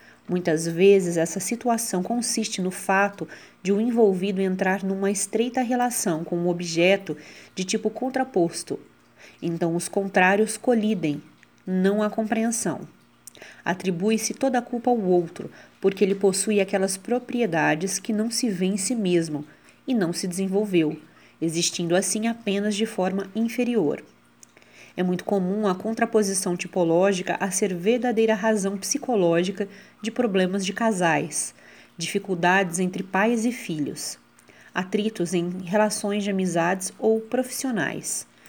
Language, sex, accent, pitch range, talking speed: Portuguese, female, Brazilian, 180-220 Hz, 130 wpm